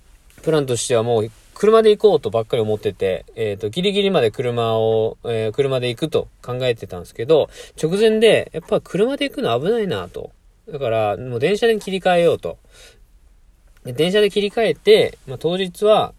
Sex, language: male, Japanese